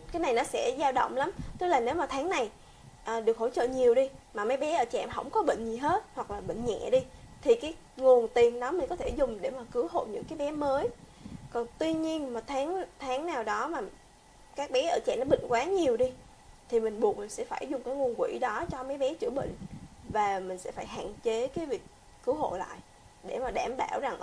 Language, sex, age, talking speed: Vietnamese, female, 20-39, 255 wpm